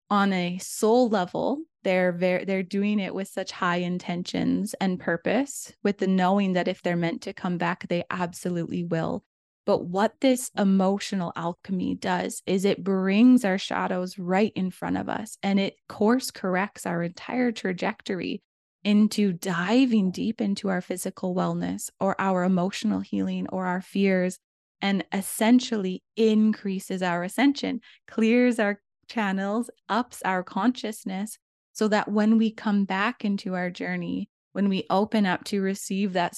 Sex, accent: female, American